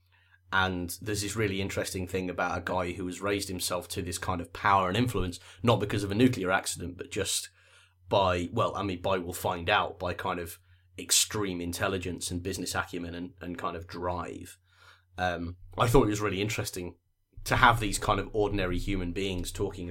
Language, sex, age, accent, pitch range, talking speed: English, male, 30-49, British, 90-100 Hz, 195 wpm